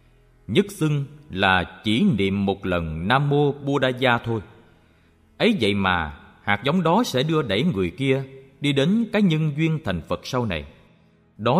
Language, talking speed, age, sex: Vietnamese, 170 wpm, 20-39, male